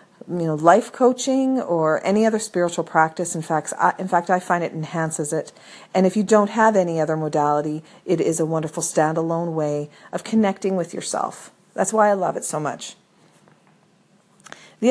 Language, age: English, 40-59